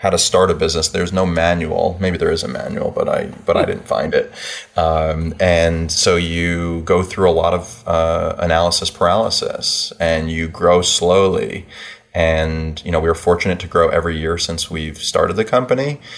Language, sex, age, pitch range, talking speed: English, male, 30-49, 80-90 Hz, 190 wpm